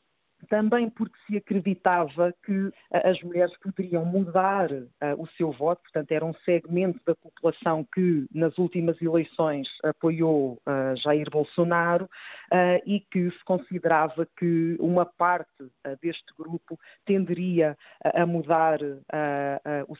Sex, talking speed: female, 115 wpm